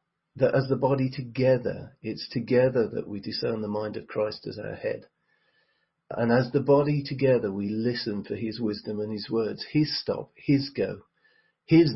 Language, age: English, 40-59